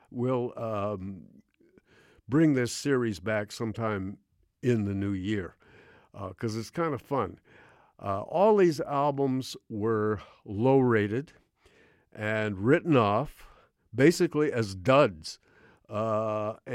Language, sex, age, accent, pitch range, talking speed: English, male, 60-79, American, 105-130 Hz, 110 wpm